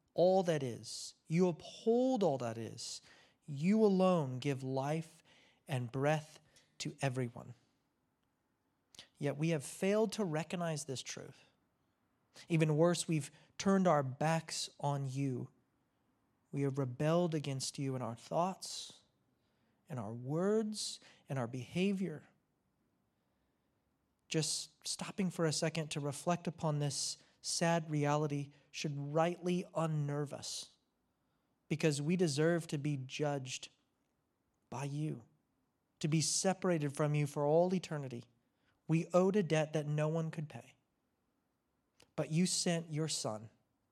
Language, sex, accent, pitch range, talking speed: English, male, American, 140-170 Hz, 125 wpm